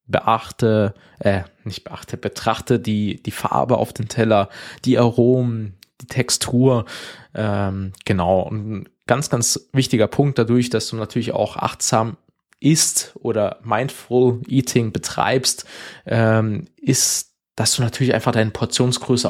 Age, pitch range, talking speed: 20-39, 105-130 Hz, 130 wpm